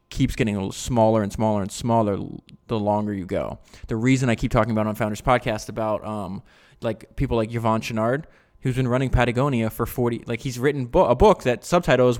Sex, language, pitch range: male, English, 110-130 Hz